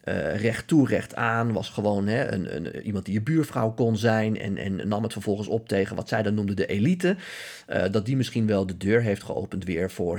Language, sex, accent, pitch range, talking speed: Dutch, male, Dutch, 95-115 Hz, 235 wpm